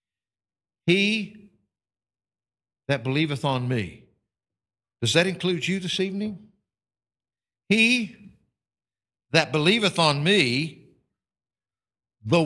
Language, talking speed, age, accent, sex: English, 80 wpm, 60-79, American, male